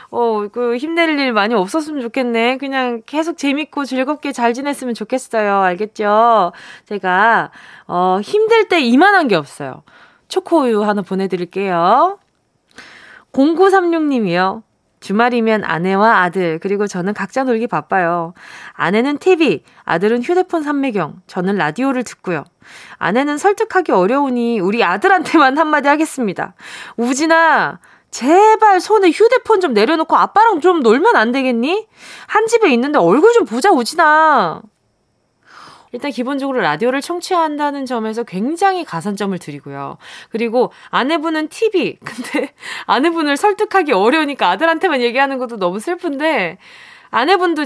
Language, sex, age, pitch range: Korean, female, 20-39, 220-335 Hz